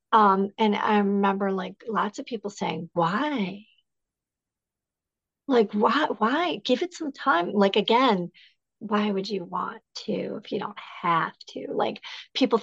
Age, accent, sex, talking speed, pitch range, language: 40-59, American, female, 145 wpm, 180-225 Hz, English